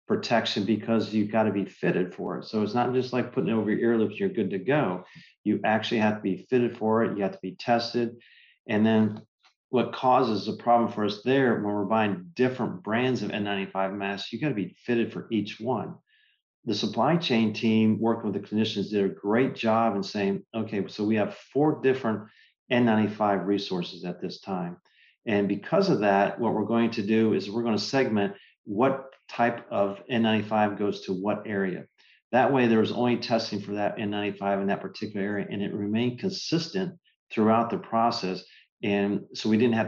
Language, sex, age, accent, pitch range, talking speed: English, male, 40-59, American, 100-120 Hz, 200 wpm